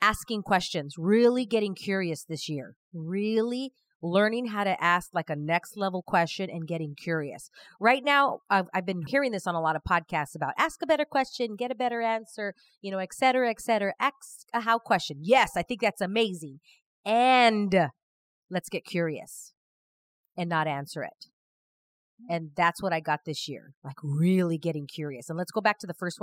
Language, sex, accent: English, female, American